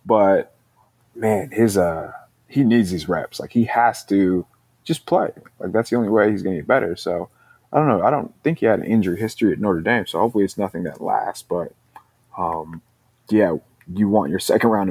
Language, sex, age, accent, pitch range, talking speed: English, male, 20-39, American, 90-120 Hz, 210 wpm